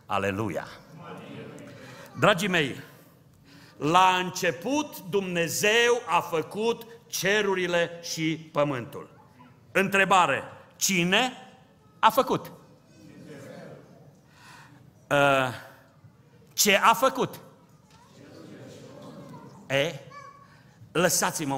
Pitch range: 150-195 Hz